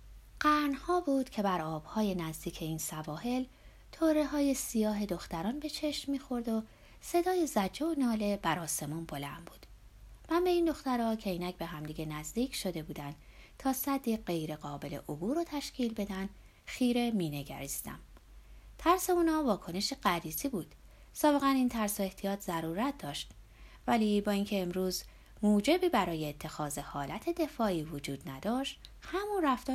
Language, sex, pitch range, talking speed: Persian, female, 170-275 Hz, 135 wpm